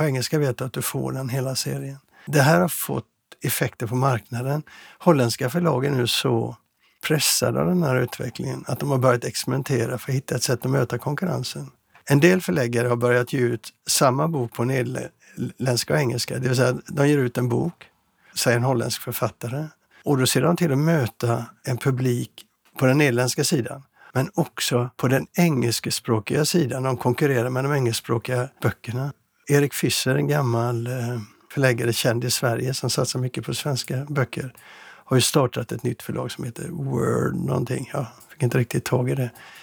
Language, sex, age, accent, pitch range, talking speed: Swedish, male, 60-79, native, 120-145 Hz, 185 wpm